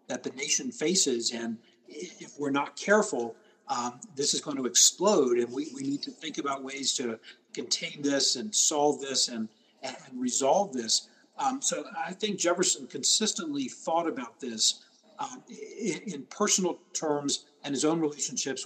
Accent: American